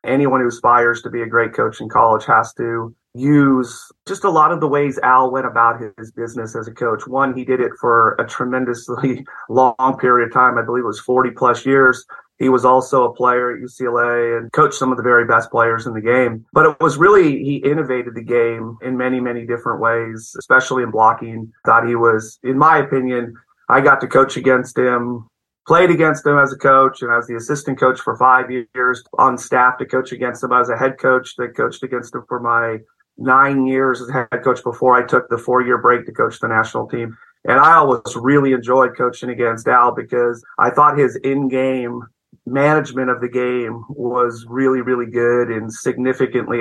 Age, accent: 30-49, American